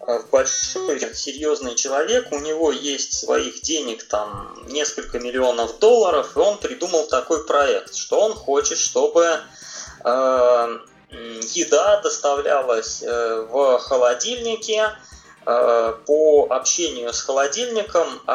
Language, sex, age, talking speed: Russian, male, 20-39, 95 wpm